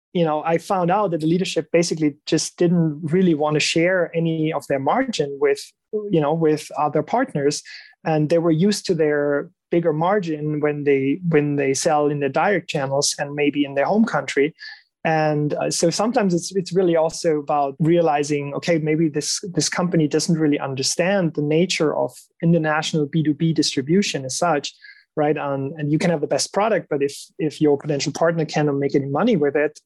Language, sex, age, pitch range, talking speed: English, male, 30-49, 145-175 Hz, 190 wpm